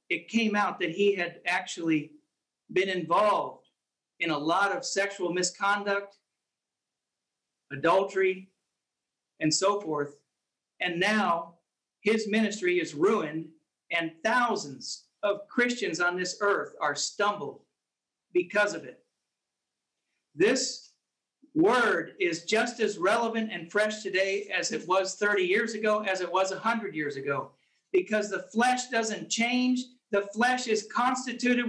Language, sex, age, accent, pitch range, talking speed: English, male, 50-69, American, 195-240 Hz, 125 wpm